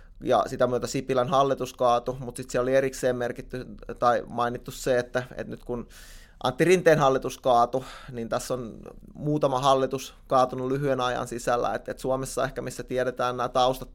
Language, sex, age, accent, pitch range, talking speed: Finnish, male, 20-39, native, 120-135 Hz, 170 wpm